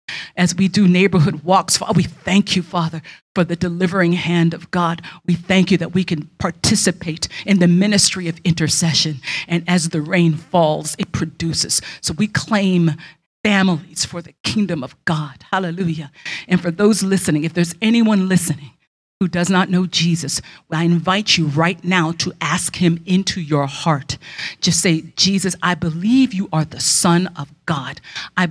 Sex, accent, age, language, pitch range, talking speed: female, American, 50-69, English, 155-185 Hz, 170 wpm